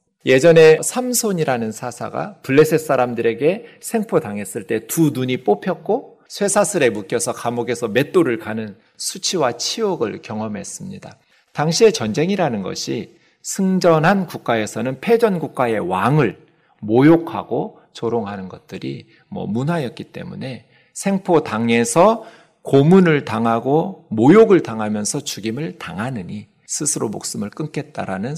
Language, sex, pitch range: Korean, male, 115-165 Hz